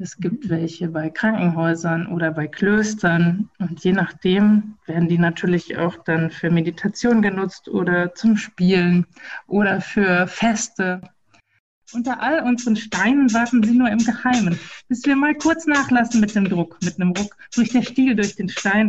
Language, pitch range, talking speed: German, 170-220 Hz, 160 wpm